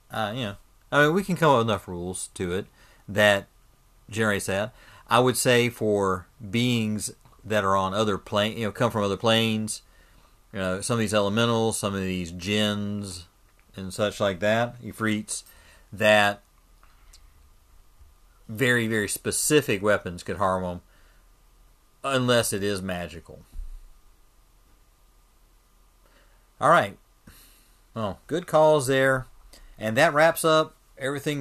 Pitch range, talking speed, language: 95-115 Hz, 140 wpm, English